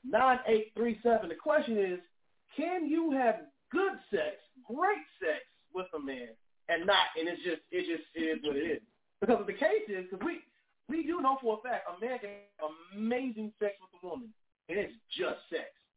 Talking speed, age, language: 190 wpm, 30-49, English